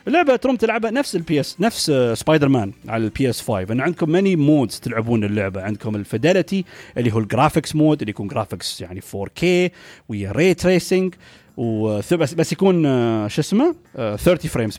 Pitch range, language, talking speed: 115-170 Hz, Arabic, 170 wpm